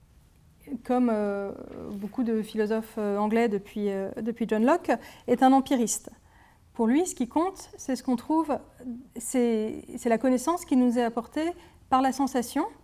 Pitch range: 230-290 Hz